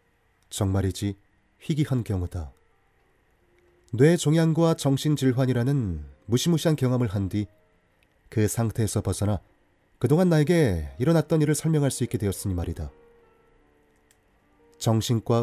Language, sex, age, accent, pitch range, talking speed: English, male, 30-49, Korean, 95-135 Hz, 80 wpm